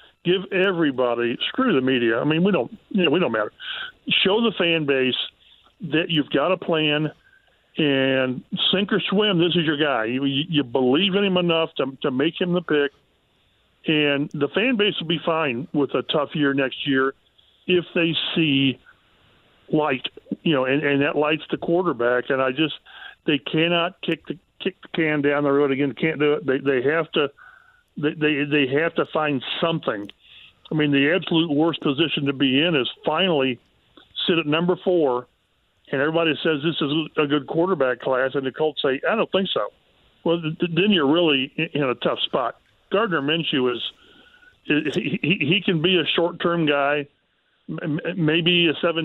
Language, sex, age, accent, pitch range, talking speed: English, male, 50-69, American, 140-170 Hz, 180 wpm